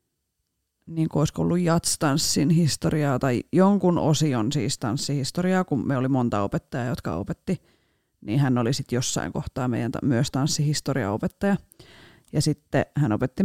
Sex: female